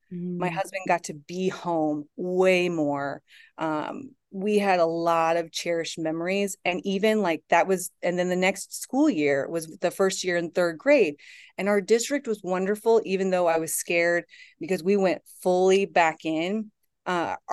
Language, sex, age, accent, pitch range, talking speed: English, female, 30-49, American, 170-210 Hz, 175 wpm